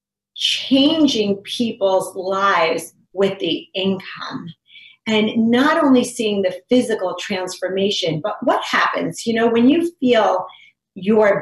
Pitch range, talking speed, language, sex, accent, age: 185-250 Hz, 115 wpm, English, female, American, 40-59